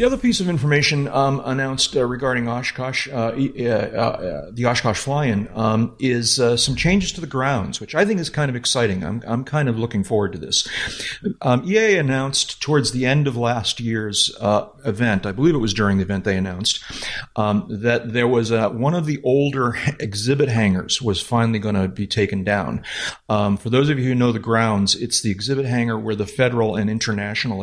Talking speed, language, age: 205 wpm, English, 40-59